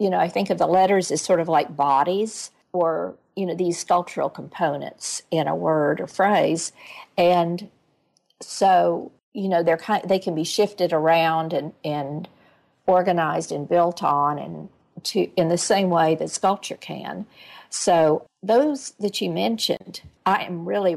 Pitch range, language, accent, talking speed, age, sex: 165-195 Hz, English, American, 160 wpm, 50-69, female